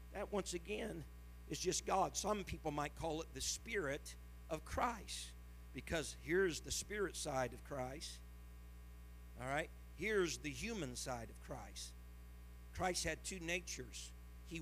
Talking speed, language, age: 145 wpm, English, 50-69